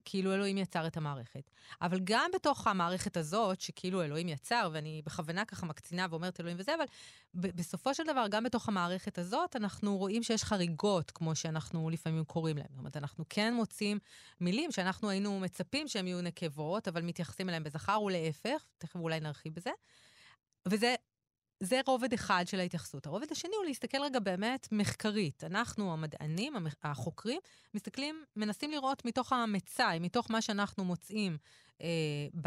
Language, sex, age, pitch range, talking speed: Hebrew, female, 20-39, 170-220 Hz, 160 wpm